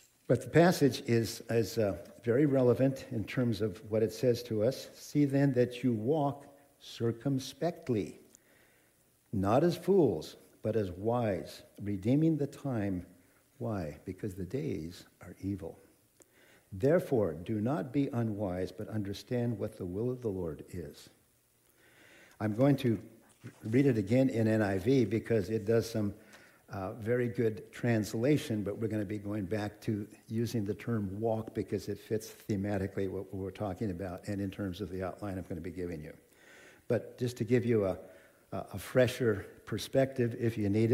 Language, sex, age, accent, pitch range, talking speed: English, male, 60-79, American, 100-125 Hz, 165 wpm